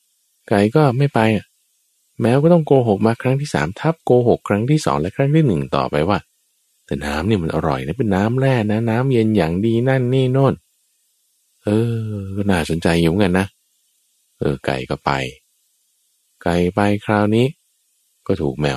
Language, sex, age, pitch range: Thai, male, 20-39, 85-125 Hz